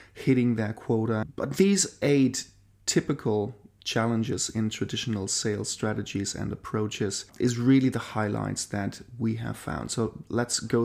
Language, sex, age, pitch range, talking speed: English, male, 30-49, 110-125 Hz, 140 wpm